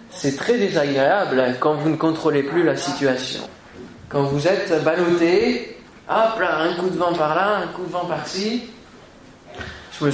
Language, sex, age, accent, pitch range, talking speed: French, male, 20-39, French, 140-190 Hz, 170 wpm